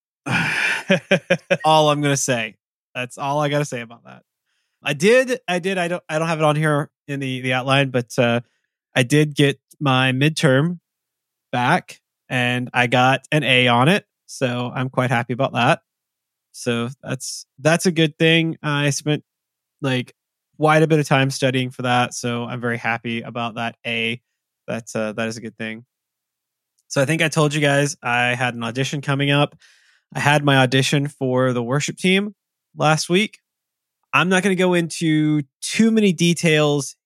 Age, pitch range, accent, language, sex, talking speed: 20-39, 125-165 Hz, American, English, male, 185 wpm